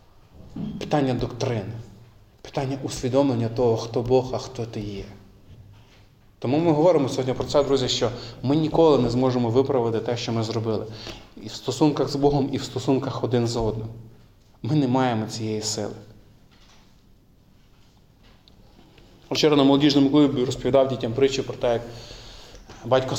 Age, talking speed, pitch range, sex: 20-39, 140 wpm, 115-140 Hz, male